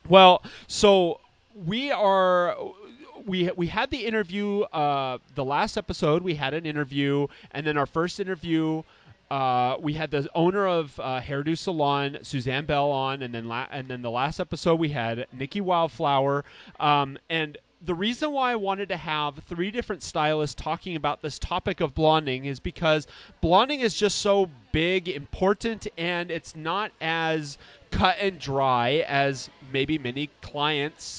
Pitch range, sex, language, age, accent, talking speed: 140-185 Hz, male, English, 30-49, American, 160 wpm